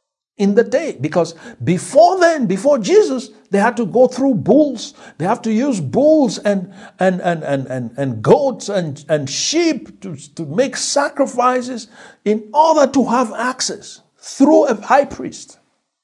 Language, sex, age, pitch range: English, male, 60-79, 170-245 Hz